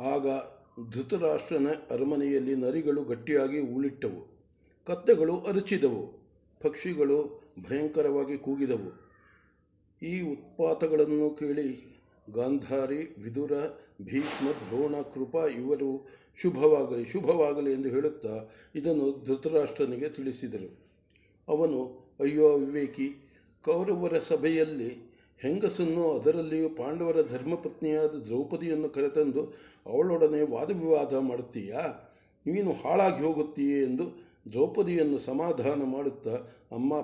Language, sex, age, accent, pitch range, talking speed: English, male, 50-69, Indian, 135-155 Hz, 80 wpm